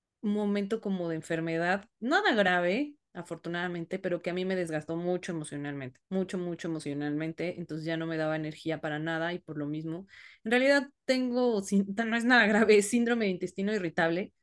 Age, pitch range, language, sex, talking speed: 20-39, 165-205 Hz, Spanish, female, 175 wpm